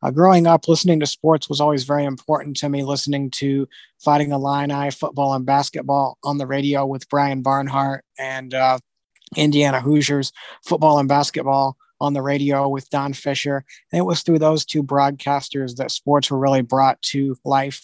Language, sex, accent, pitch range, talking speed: English, male, American, 135-150 Hz, 170 wpm